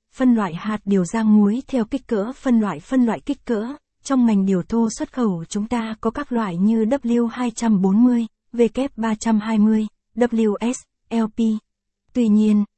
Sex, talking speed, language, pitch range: female, 150 wpm, Vietnamese, 205-240 Hz